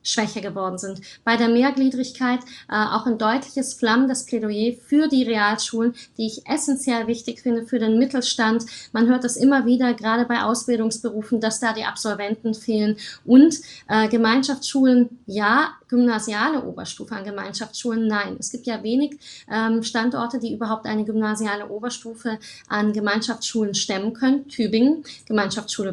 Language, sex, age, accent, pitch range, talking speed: German, female, 20-39, German, 215-250 Hz, 145 wpm